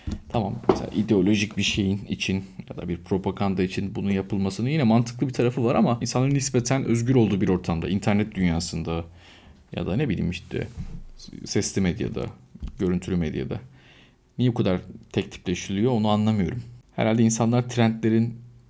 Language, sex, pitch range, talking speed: Turkish, male, 90-120 Hz, 140 wpm